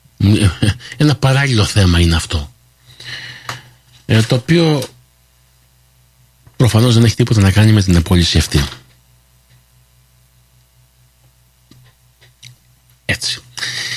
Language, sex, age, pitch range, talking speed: Greek, male, 50-69, 80-125 Hz, 80 wpm